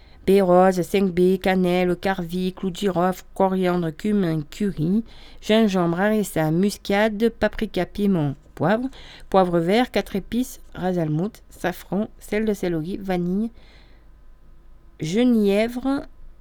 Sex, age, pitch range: female, 40-59, 175-215 Hz